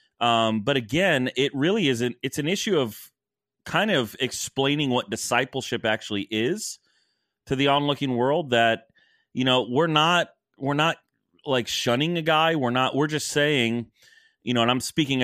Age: 30-49